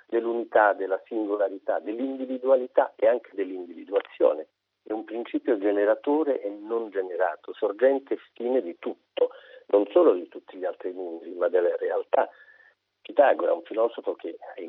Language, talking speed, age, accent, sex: Italian, 140 wpm, 50-69, native, male